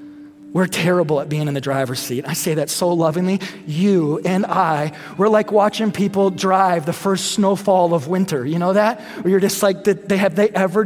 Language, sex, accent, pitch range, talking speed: English, male, American, 140-200 Hz, 210 wpm